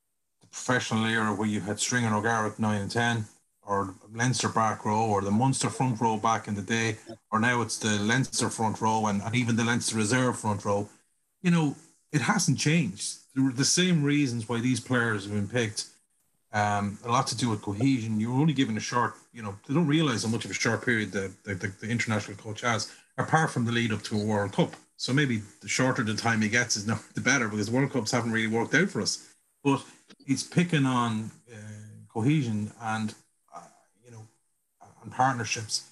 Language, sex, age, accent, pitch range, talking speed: English, male, 30-49, Irish, 105-125 Hz, 210 wpm